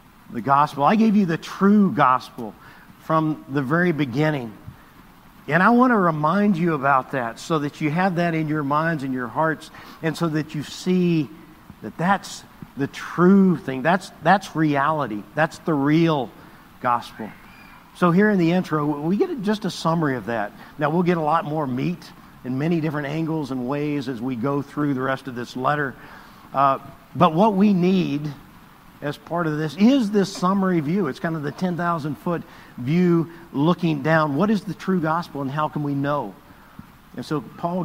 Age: 50-69